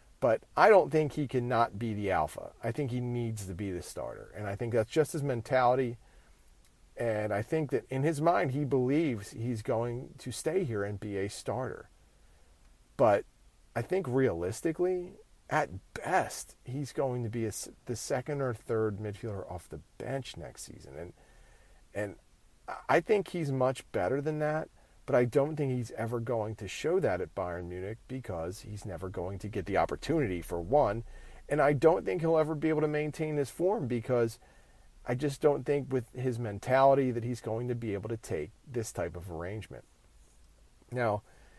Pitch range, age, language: 95-140 Hz, 40-59, English